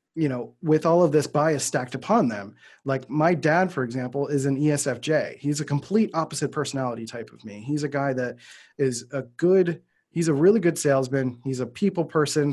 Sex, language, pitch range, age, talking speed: male, English, 135-165 Hz, 30-49, 200 wpm